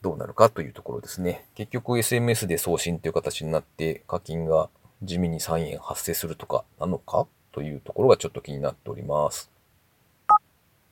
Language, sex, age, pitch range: Japanese, male, 40-59, 90-135 Hz